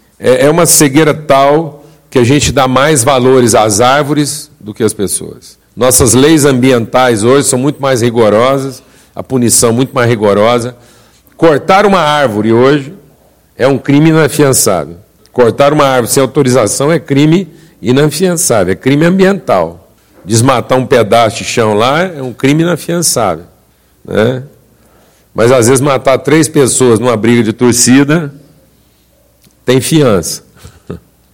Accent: Brazilian